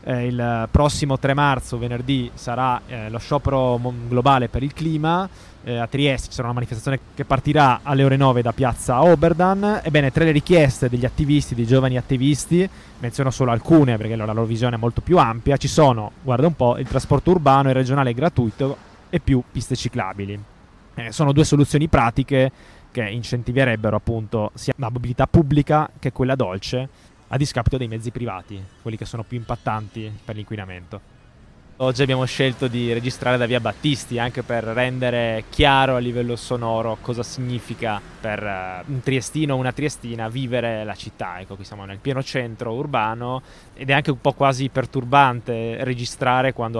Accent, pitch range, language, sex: native, 115-135 Hz, Italian, male